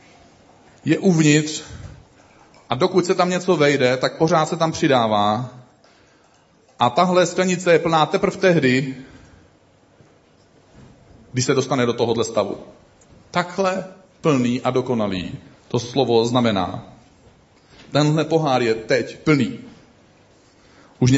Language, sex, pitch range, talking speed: Czech, male, 125-175 Hz, 110 wpm